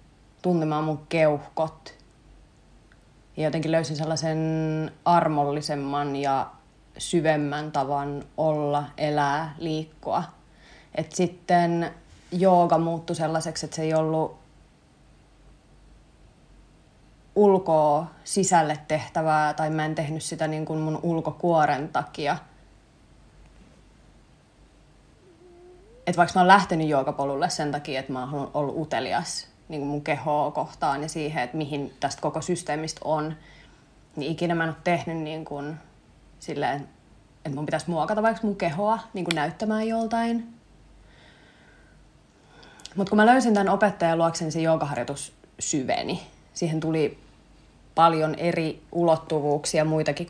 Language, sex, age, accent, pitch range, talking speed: Finnish, female, 30-49, native, 150-170 Hz, 115 wpm